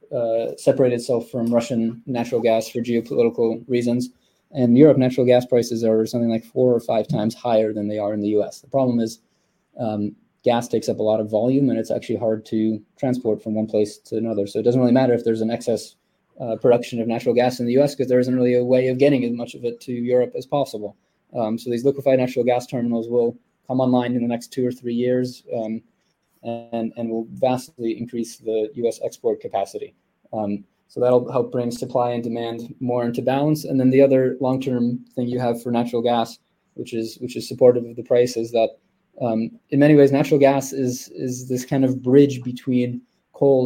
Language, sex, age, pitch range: English, male, 20-39, 115-125 Hz